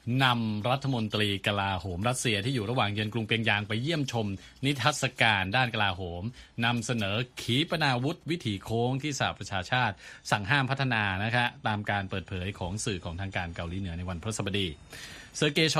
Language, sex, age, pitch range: Thai, male, 20-39, 95-130 Hz